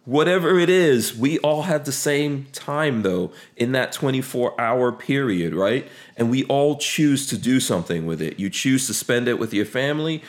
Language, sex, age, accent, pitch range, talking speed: English, male, 40-59, American, 105-130 Hz, 185 wpm